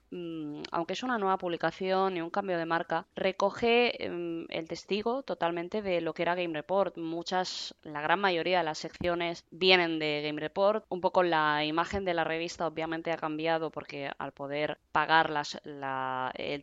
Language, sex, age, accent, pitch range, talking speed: Spanish, female, 20-39, Spanish, 160-205 Hz, 165 wpm